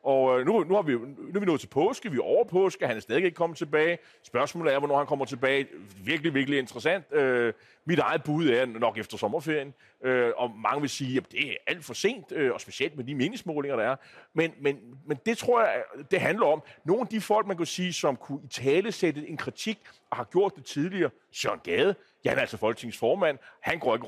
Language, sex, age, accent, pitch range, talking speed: Danish, male, 30-49, native, 130-180 Hz, 235 wpm